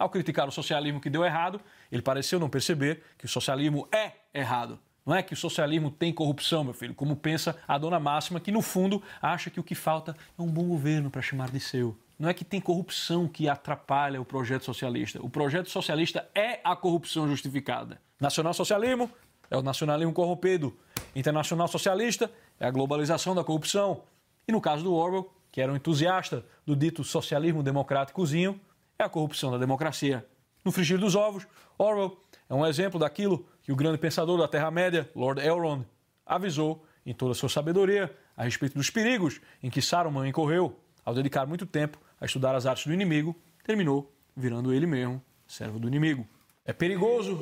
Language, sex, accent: Portuguese, male, Brazilian